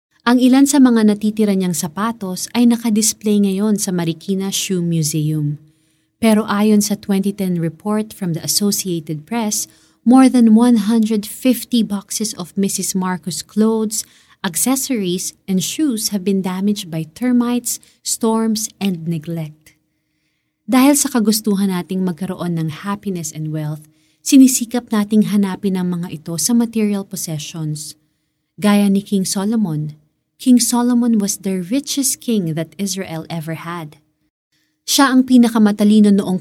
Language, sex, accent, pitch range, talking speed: Filipino, female, native, 170-225 Hz, 130 wpm